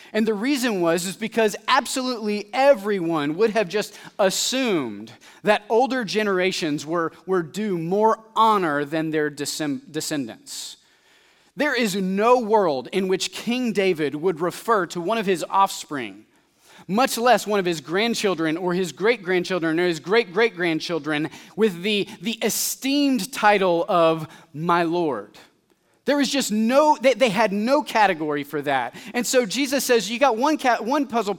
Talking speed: 155 wpm